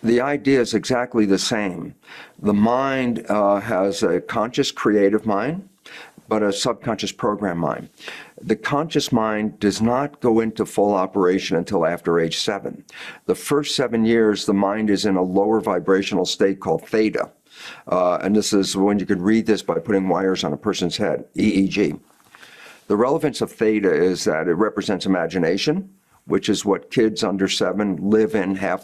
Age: 50-69